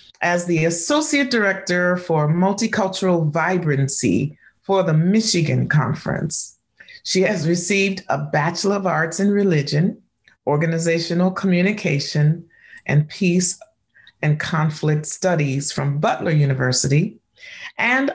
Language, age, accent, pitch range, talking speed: English, 40-59, American, 150-195 Hz, 105 wpm